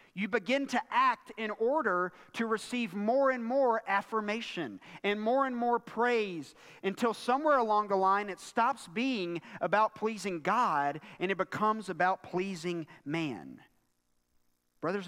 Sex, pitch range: male, 140-225 Hz